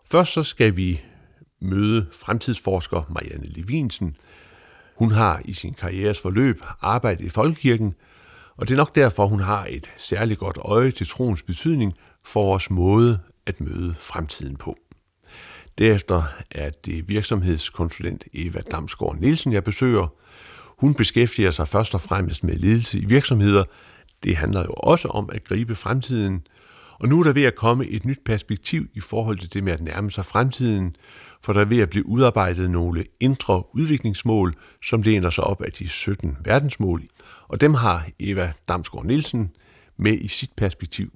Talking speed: 165 wpm